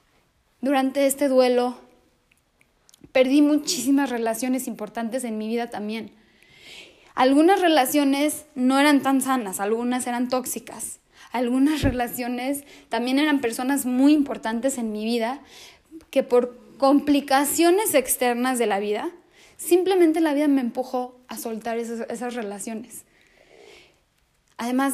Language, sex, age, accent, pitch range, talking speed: Spanish, female, 20-39, Mexican, 200-265 Hz, 115 wpm